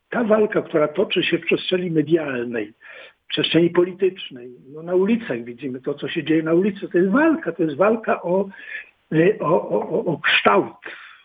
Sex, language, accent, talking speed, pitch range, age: male, Polish, native, 155 wpm, 140-180 Hz, 60-79